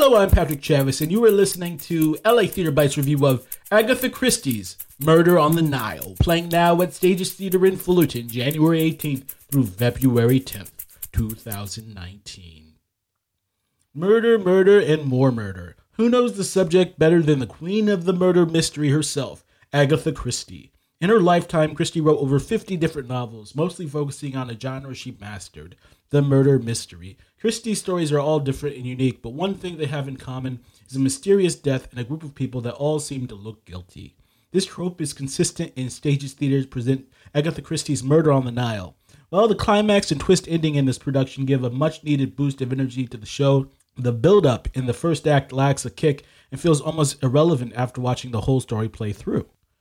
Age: 30-49